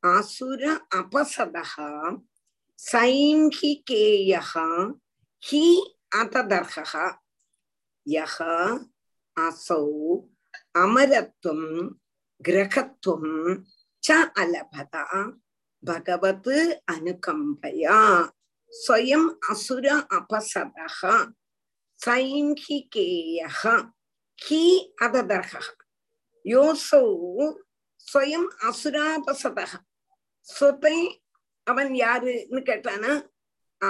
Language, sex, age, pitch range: Tamil, female, 50-69, 190-300 Hz